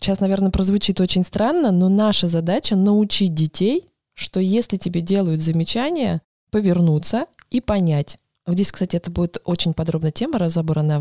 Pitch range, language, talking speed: 170-210 Hz, Russian, 140 wpm